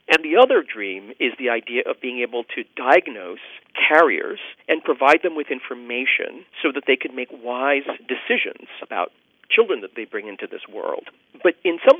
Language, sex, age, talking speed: English, male, 50-69, 180 wpm